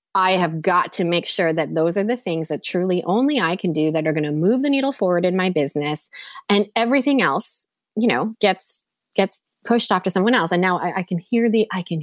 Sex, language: female, English